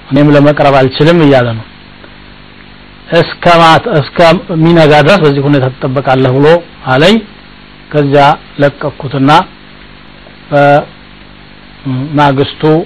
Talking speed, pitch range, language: 95 wpm, 140-160 Hz, Amharic